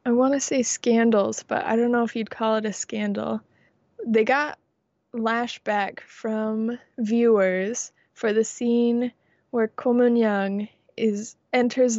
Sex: female